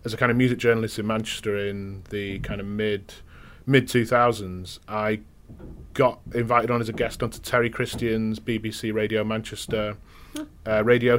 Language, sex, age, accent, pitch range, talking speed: English, male, 30-49, British, 100-120 Hz, 160 wpm